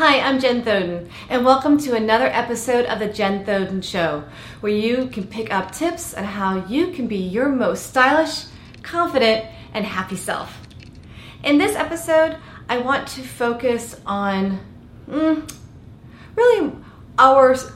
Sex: female